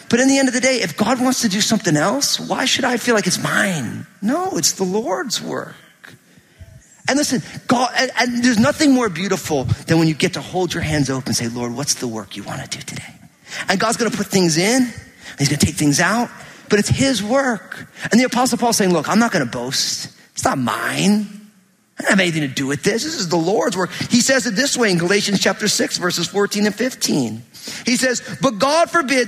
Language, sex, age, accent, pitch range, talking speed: English, male, 40-59, American, 185-260 Hz, 240 wpm